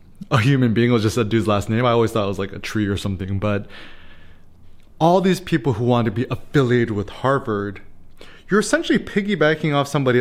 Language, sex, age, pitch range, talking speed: English, male, 20-39, 105-135 Hz, 205 wpm